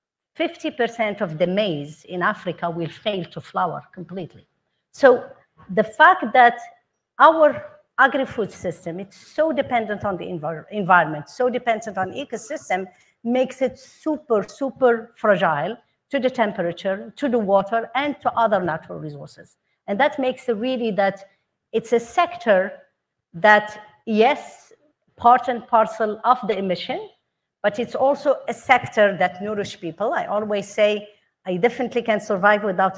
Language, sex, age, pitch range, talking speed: English, female, 50-69, 195-255 Hz, 140 wpm